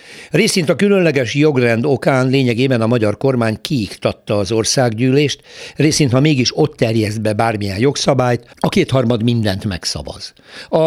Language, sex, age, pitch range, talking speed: Hungarian, male, 60-79, 110-140 Hz, 140 wpm